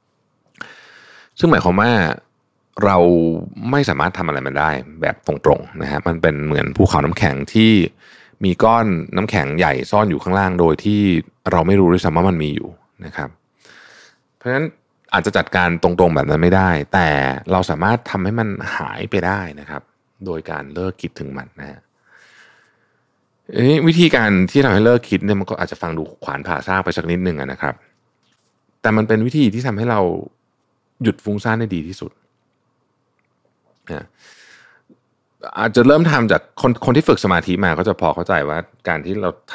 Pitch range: 80-110 Hz